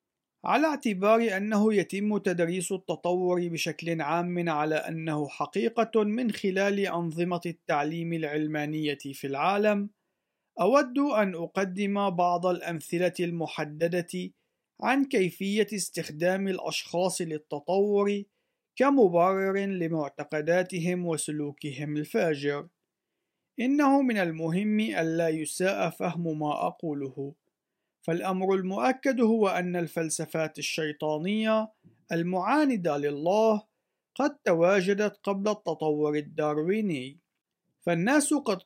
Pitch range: 160-205 Hz